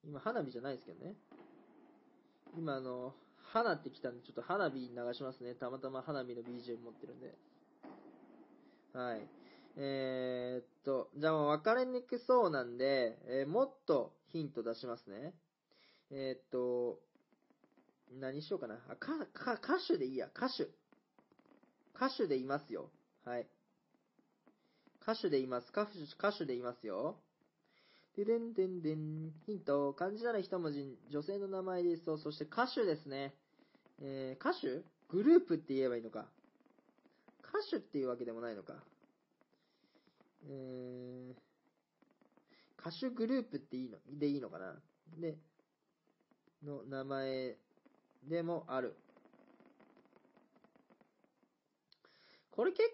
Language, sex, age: Japanese, male, 20-39